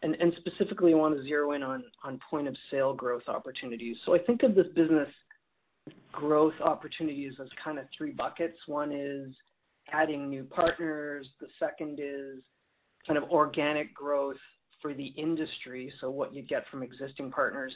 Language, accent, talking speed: English, American, 160 wpm